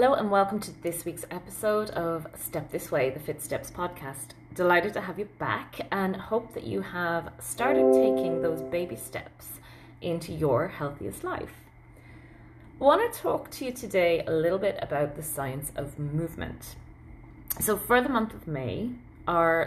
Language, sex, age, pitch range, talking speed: English, female, 30-49, 145-215 Hz, 170 wpm